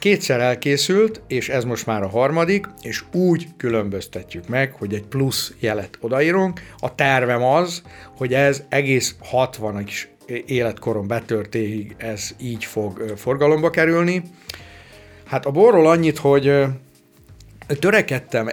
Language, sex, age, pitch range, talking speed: Hungarian, male, 60-79, 110-140 Hz, 120 wpm